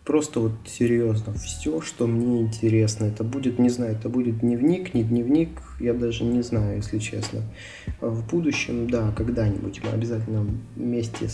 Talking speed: 155 wpm